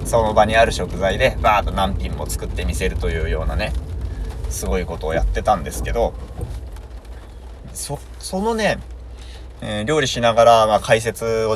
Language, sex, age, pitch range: Japanese, male, 20-39, 80-110 Hz